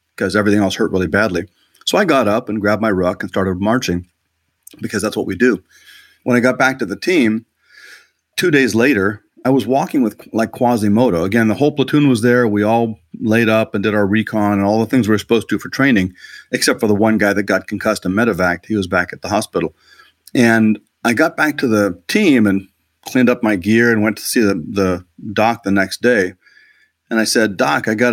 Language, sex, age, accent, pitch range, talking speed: English, male, 40-59, American, 95-120 Hz, 230 wpm